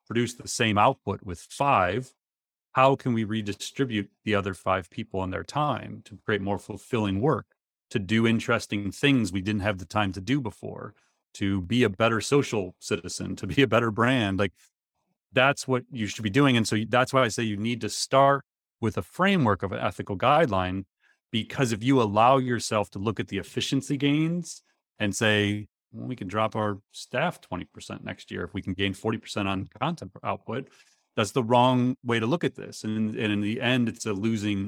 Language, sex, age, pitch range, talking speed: English, male, 30-49, 100-120 Hz, 195 wpm